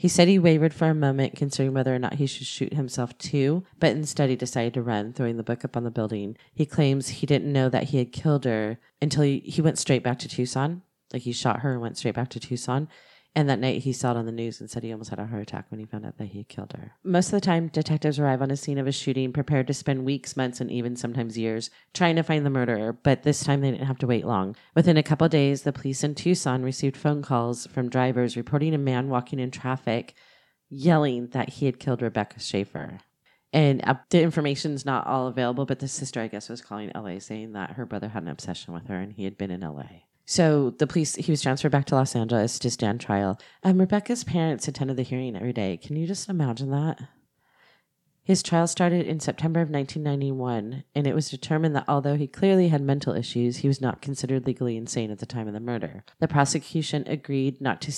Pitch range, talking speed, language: 125-150 Hz, 245 wpm, English